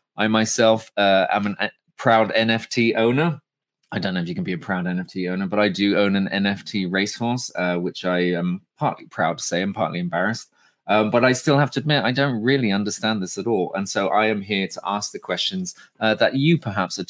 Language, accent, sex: English, British, male